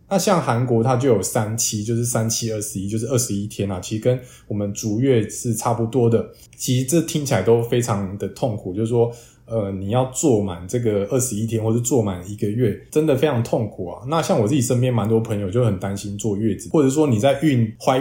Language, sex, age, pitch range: Chinese, male, 20-39, 105-130 Hz